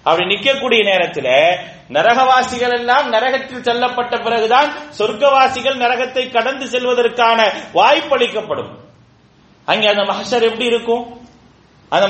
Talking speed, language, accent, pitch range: 105 wpm, English, Indian, 220-265 Hz